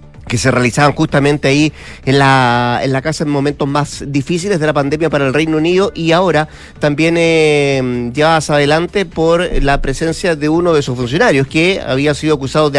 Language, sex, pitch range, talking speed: Spanish, male, 130-155 Hz, 190 wpm